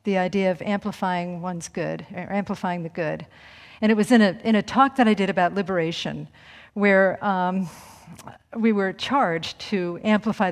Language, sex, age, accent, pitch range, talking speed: English, female, 50-69, American, 180-220 Hz, 170 wpm